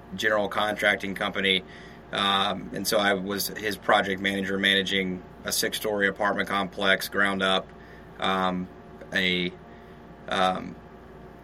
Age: 30-49